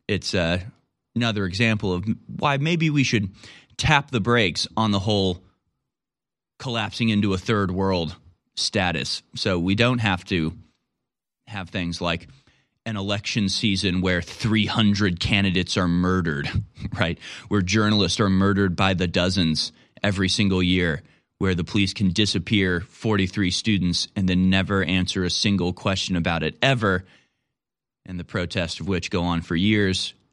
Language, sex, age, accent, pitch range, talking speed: English, male, 30-49, American, 90-115 Hz, 145 wpm